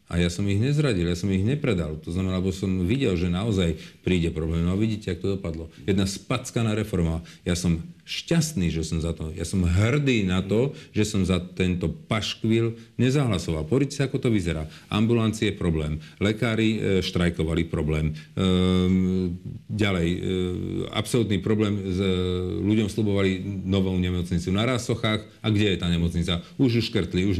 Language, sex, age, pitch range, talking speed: Slovak, male, 40-59, 90-110 Hz, 170 wpm